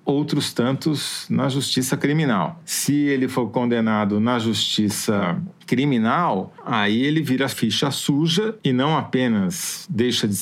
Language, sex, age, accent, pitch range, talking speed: Portuguese, male, 50-69, Brazilian, 115-150 Hz, 125 wpm